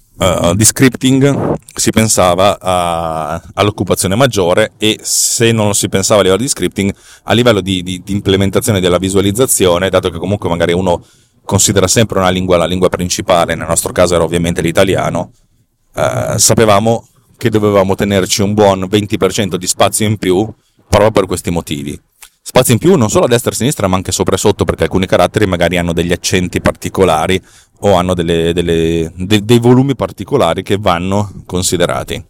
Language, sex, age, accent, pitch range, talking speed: Italian, male, 30-49, native, 90-110 Hz, 175 wpm